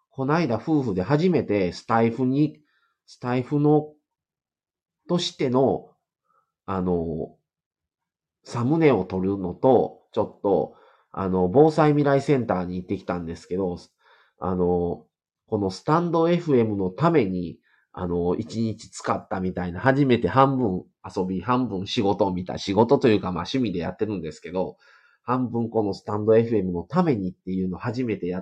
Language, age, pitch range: Japanese, 30-49, 95-145 Hz